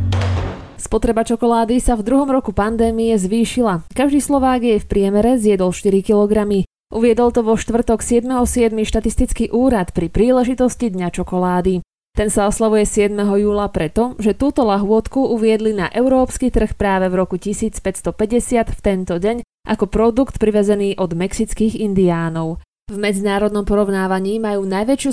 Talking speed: 140 wpm